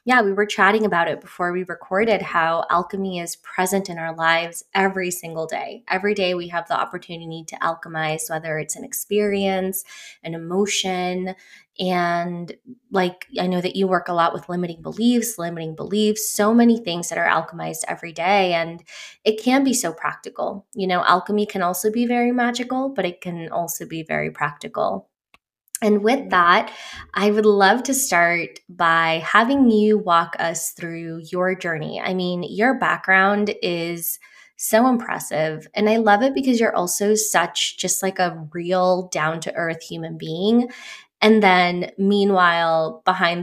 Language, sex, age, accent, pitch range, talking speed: English, female, 20-39, American, 170-210 Hz, 165 wpm